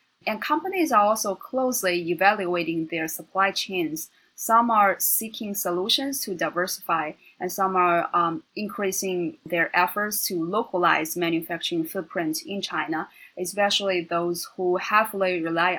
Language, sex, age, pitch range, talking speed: English, female, 20-39, 170-210 Hz, 125 wpm